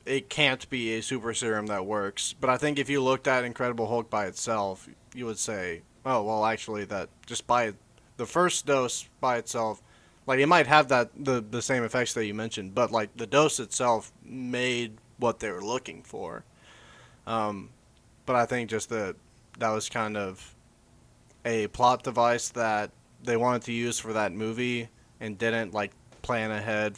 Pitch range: 110-125 Hz